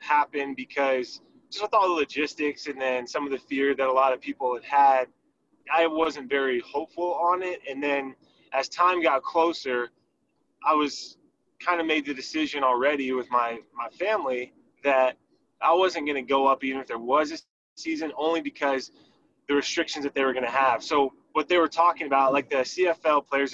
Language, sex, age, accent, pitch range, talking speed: English, male, 20-39, American, 130-155 Hz, 195 wpm